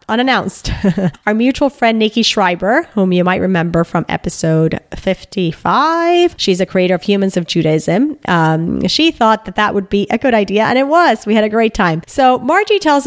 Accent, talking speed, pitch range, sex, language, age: American, 190 wpm, 180-245 Hz, female, English, 30-49